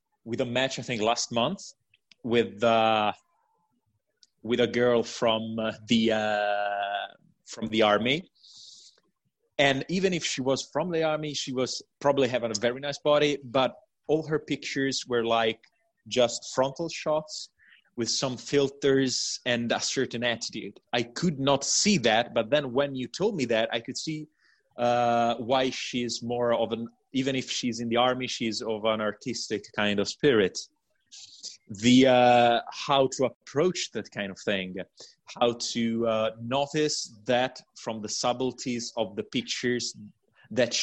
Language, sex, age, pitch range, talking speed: English, male, 30-49, 110-140 Hz, 155 wpm